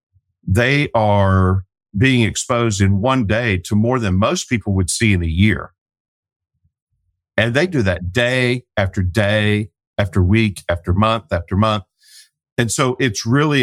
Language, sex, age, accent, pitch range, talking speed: English, male, 50-69, American, 95-115 Hz, 150 wpm